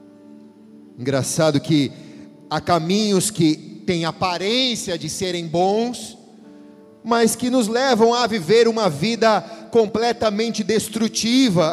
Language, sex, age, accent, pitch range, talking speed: Portuguese, male, 40-59, Brazilian, 160-220 Hz, 100 wpm